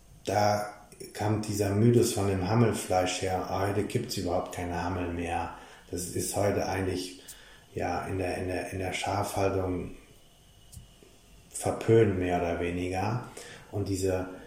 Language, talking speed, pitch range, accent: German, 140 wpm, 95-120 Hz, German